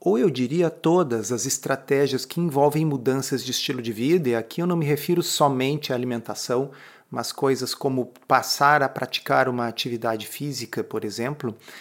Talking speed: 170 wpm